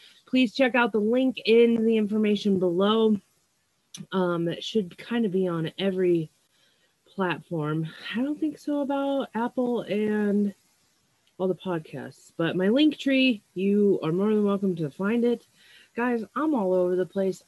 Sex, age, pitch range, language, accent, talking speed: female, 30-49, 175-240 Hz, English, American, 160 wpm